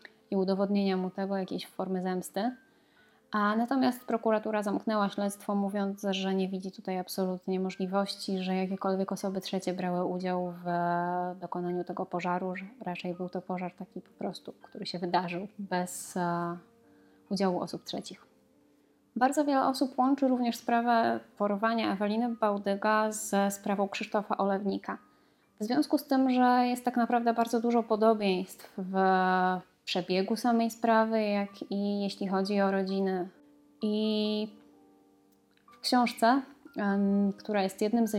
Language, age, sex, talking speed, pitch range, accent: Polish, 20-39, female, 135 wpm, 185-220 Hz, native